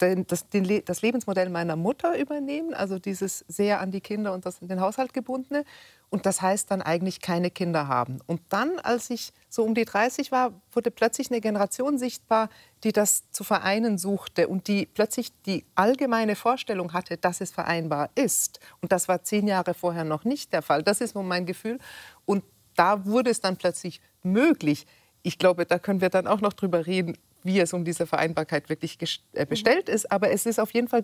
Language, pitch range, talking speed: German, 170-210 Hz, 195 wpm